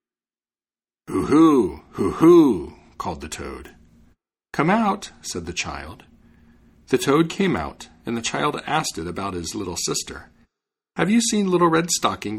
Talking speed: 140 wpm